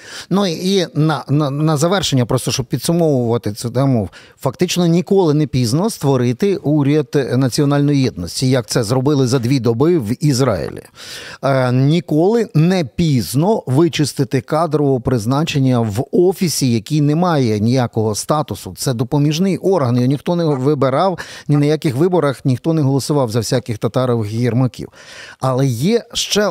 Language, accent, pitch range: Ukrainian, native, 130-175 Hz